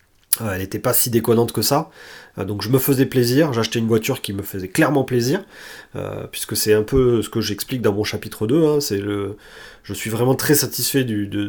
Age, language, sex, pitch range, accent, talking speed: 30-49, French, male, 110-140 Hz, French, 220 wpm